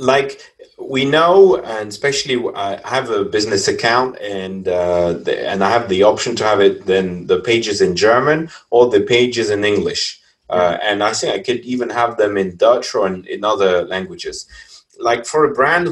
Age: 30-49